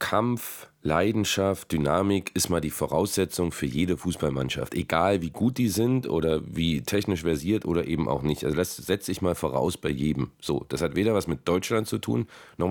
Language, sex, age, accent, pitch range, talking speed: German, male, 40-59, German, 80-105 Hz, 195 wpm